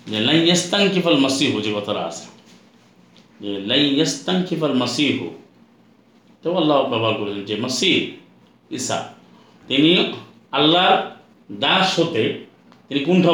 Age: 50-69